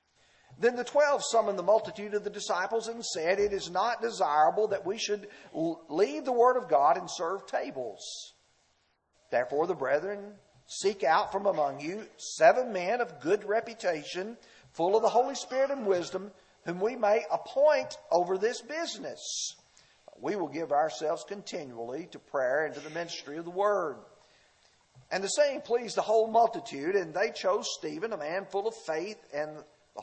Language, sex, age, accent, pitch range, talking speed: English, male, 50-69, American, 145-220 Hz, 170 wpm